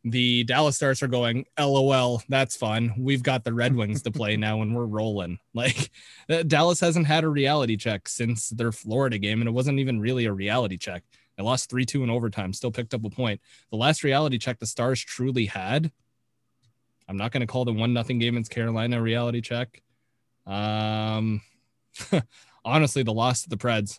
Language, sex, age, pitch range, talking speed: English, male, 20-39, 110-125 Hz, 195 wpm